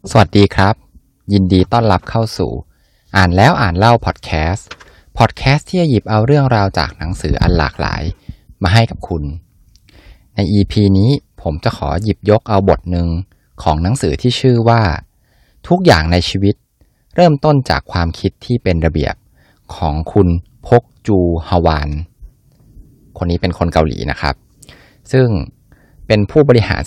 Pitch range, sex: 85-115 Hz, male